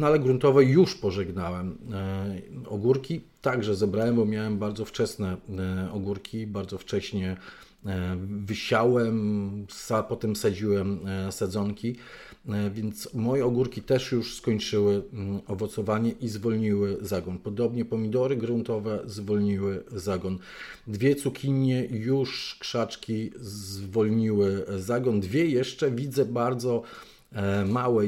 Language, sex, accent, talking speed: Polish, male, native, 95 wpm